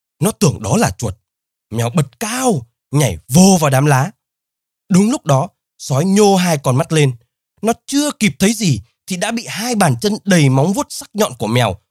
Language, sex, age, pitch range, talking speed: Vietnamese, male, 20-39, 120-200 Hz, 200 wpm